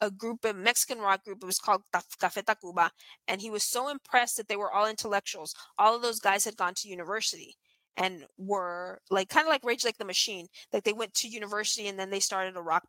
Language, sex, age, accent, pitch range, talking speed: English, female, 20-39, American, 195-230 Hz, 235 wpm